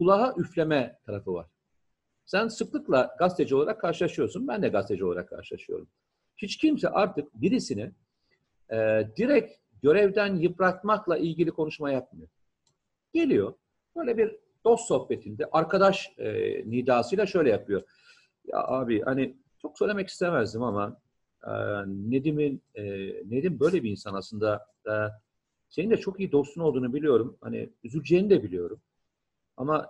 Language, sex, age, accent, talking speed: Turkish, male, 50-69, native, 125 wpm